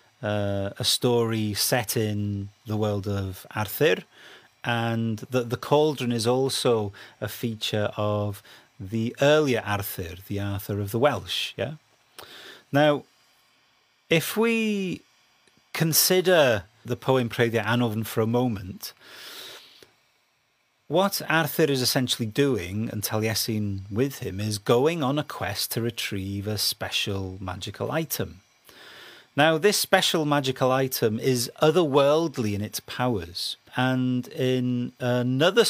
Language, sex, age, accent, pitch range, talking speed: English, male, 30-49, British, 105-135 Hz, 120 wpm